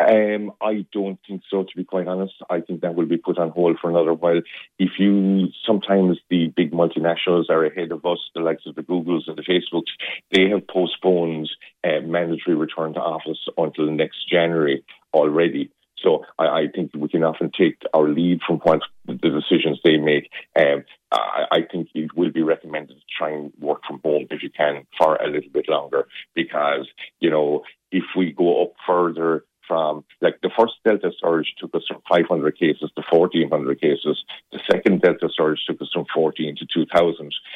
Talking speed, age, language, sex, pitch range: 190 wpm, 50-69, English, male, 75-90 Hz